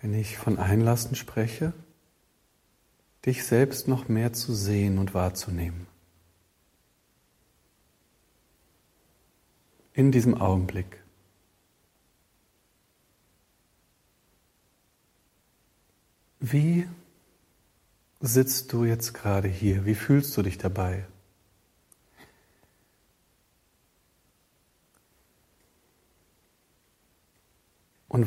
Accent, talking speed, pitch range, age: German, 60 wpm, 95-135 Hz, 50-69